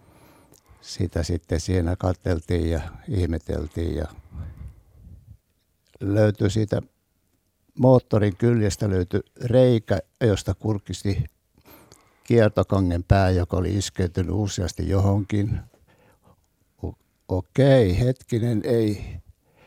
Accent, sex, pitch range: native, male, 90-115 Hz